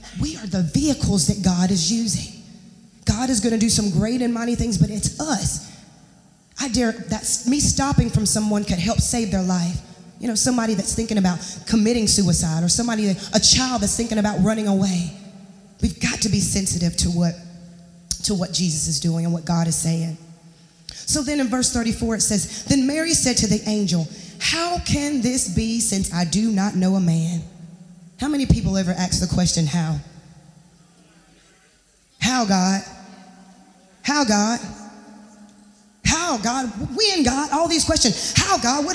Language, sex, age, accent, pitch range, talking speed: English, female, 20-39, American, 180-265 Hz, 175 wpm